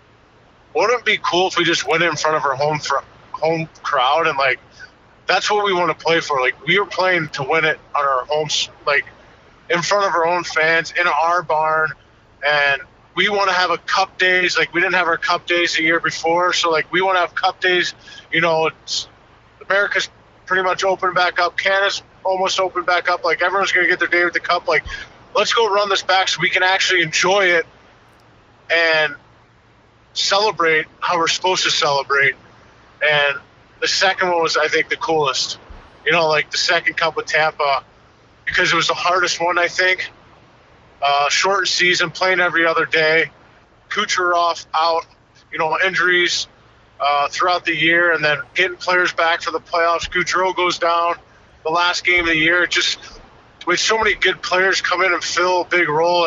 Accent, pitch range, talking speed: American, 160-185 Hz, 195 wpm